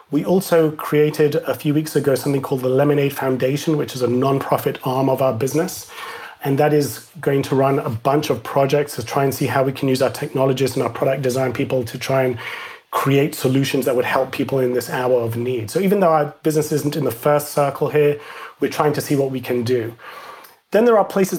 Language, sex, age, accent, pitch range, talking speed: English, male, 30-49, British, 130-150 Hz, 230 wpm